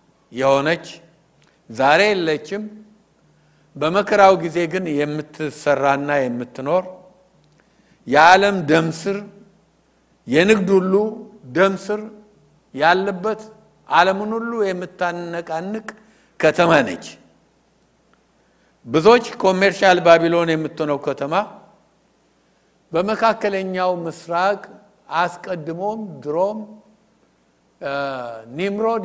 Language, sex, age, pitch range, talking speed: English, male, 60-79, 145-200 Hz, 60 wpm